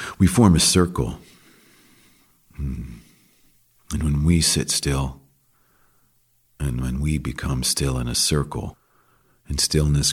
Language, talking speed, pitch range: English, 115 wpm, 65-80 Hz